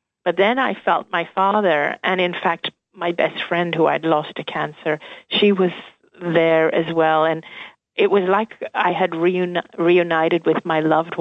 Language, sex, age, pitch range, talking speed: English, female, 40-59, 160-190 Hz, 170 wpm